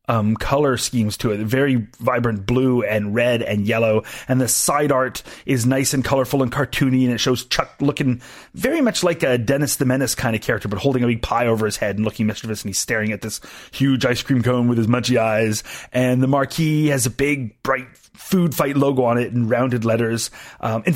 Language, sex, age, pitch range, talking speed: English, male, 30-49, 120-160 Hz, 225 wpm